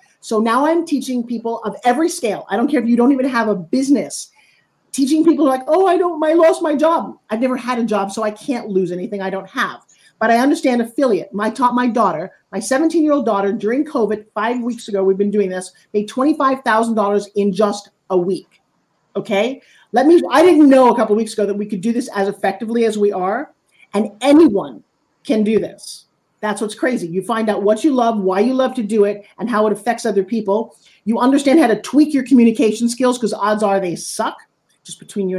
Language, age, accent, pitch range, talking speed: English, 40-59, American, 200-265 Hz, 220 wpm